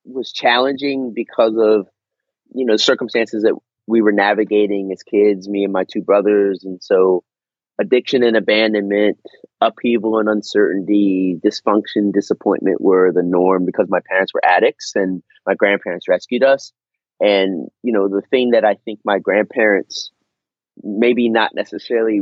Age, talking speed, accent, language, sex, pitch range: 30-49, 145 wpm, American, English, male, 100-125 Hz